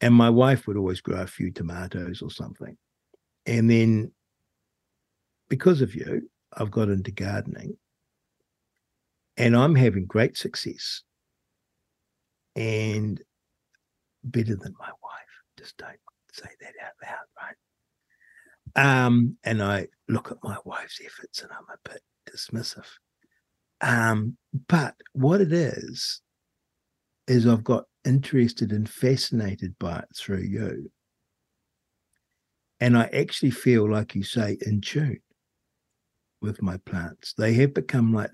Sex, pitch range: male, 105-125 Hz